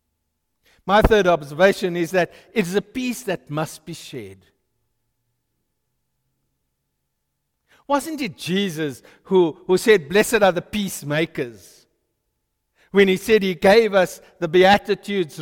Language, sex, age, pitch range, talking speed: English, male, 60-79, 125-200 Hz, 120 wpm